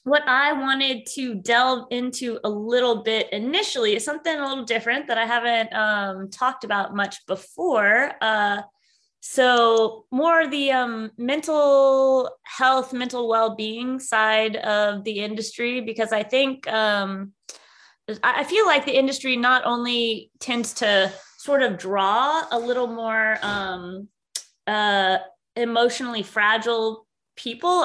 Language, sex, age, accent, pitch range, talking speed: English, female, 20-39, American, 205-255 Hz, 130 wpm